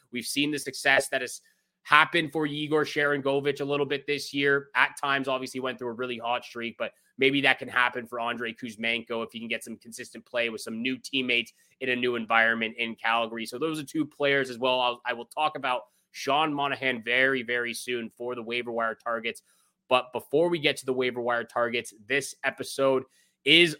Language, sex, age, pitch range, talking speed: English, male, 20-39, 125-150 Hz, 205 wpm